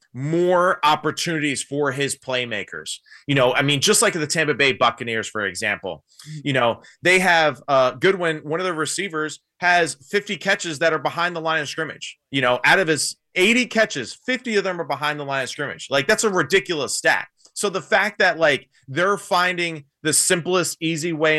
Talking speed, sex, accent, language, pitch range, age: 195 wpm, male, American, English, 130-160 Hz, 30-49